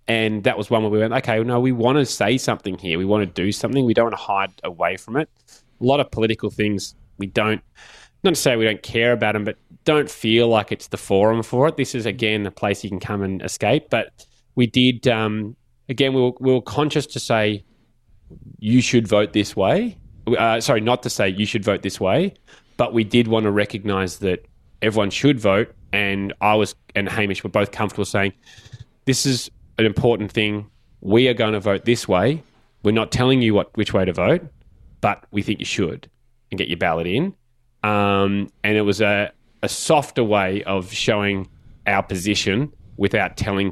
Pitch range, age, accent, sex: 100-120 Hz, 20-39, Australian, male